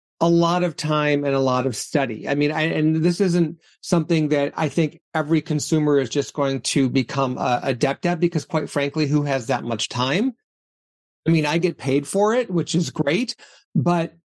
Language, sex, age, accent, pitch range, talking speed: English, male, 40-59, American, 145-180 Hz, 195 wpm